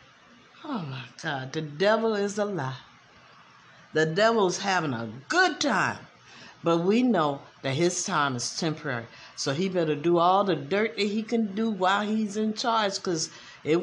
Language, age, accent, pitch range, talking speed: English, 60-79, American, 155-205 Hz, 165 wpm